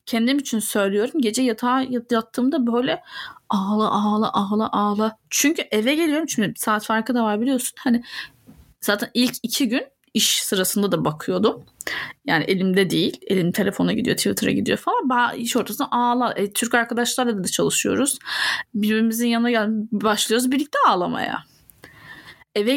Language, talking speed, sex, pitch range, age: Turkish, 145 wpm, female, 210-245 Hz, 10-29